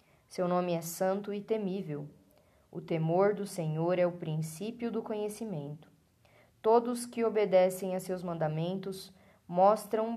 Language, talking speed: Portuguese, 130 wpm